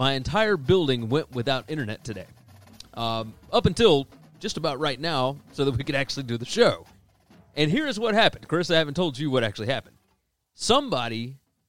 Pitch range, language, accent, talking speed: 120-165 Hz, English, American, 185 wpm